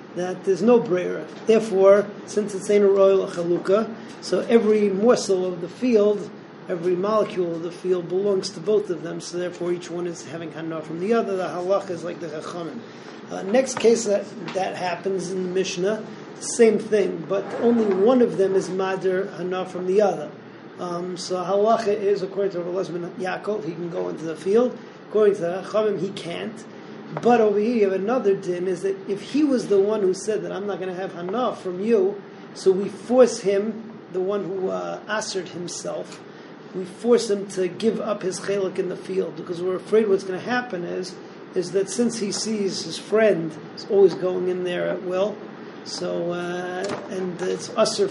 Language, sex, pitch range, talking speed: English, male, 180-210 Hz, 195 wpm